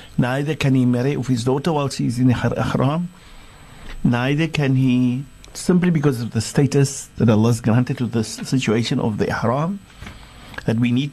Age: 60-79